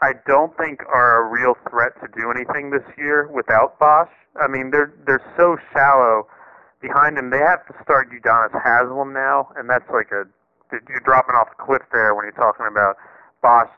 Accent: American